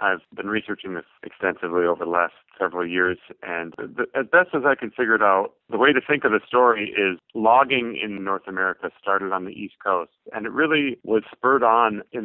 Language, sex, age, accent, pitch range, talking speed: English, male, 40-59, American, 90-110 Hz, 215 wpm